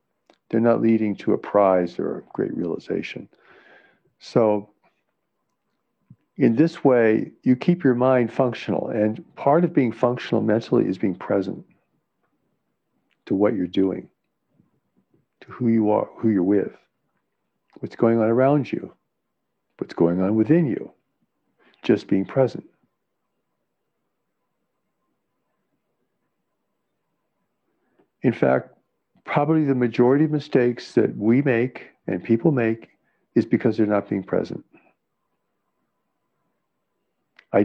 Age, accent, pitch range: 60-79, American, 110-140 Hz